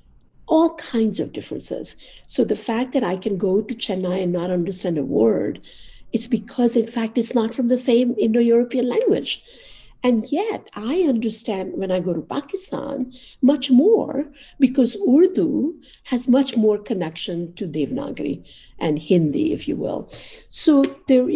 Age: 50-69